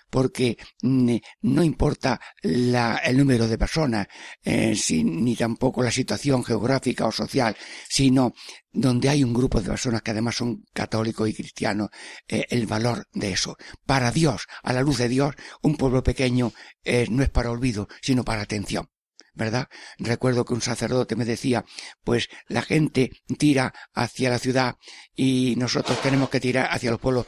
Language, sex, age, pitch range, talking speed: Spanish, male, 60-79, 115-130 Hz, 160 wpm